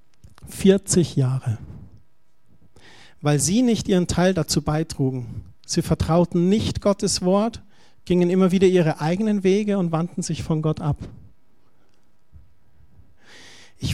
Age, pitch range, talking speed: 50-69, 155-205 Hz, 115 wpm